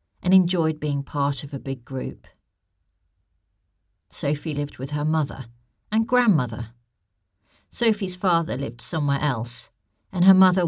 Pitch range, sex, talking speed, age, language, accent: 115-155 Hz, female, 130 wpm, 40-59, English, British